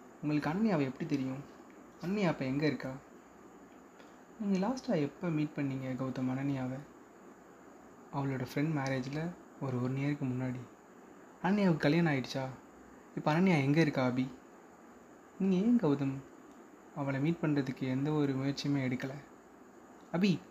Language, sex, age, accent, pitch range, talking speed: Tamil, male, 20-39, native, 135-160 Hz, 120 wpm